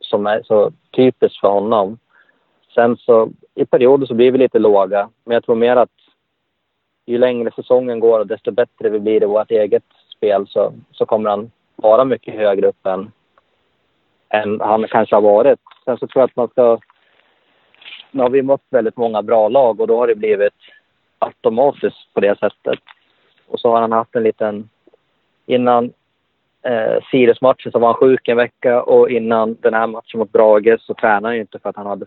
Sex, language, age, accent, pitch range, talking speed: male, Swedish, 30-49, Norwegian, 110-140 Hz, 185 wpm